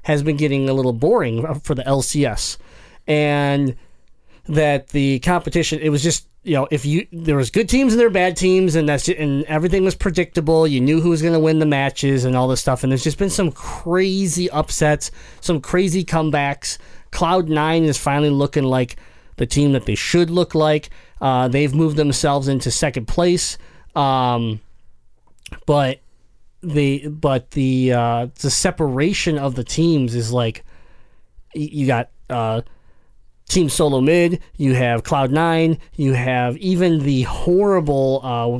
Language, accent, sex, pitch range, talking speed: English, American, male, 125-160 Hz, 165 wpm